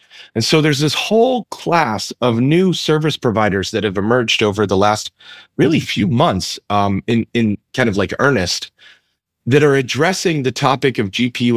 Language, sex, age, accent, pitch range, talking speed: English, male, 30-49, American, 105-145 Hz, 170 wpm